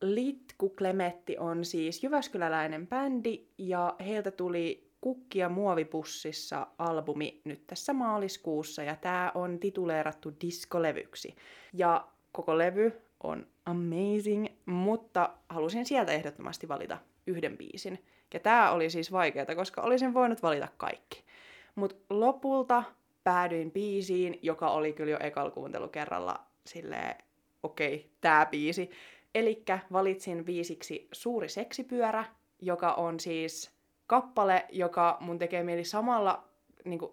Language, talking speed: Finnish, 115 wpm